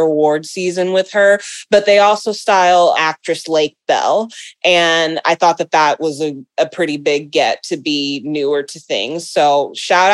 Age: 20-39